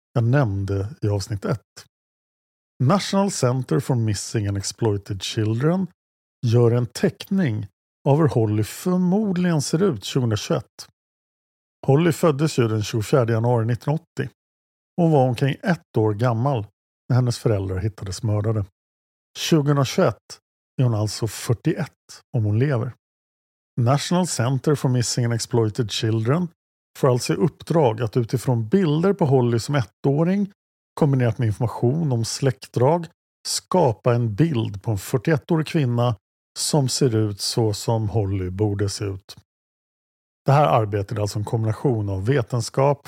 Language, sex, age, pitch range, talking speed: Swedish, male, 50-69, 105-145 Hz, 135 wpm